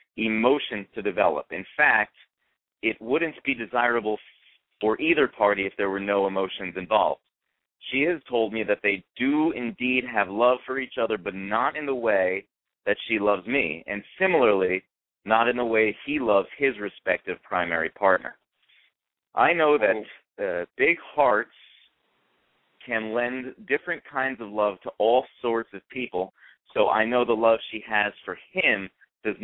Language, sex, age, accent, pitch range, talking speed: English, male, 30-49, American, 105-135 Hz, 160 wpm